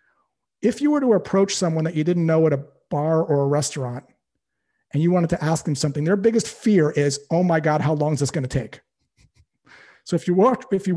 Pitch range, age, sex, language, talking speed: 155-200 Hz, 40-59, male, English, 230 wpm